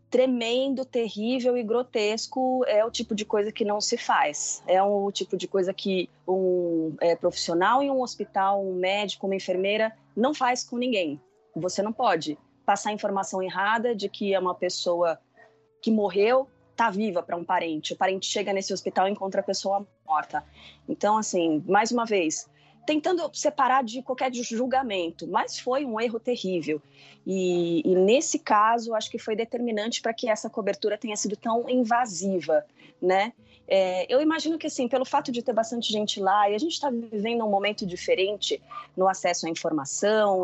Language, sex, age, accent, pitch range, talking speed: Portuguese, female, 20-39, Brazilian, 190-245 Hz, 170 wpm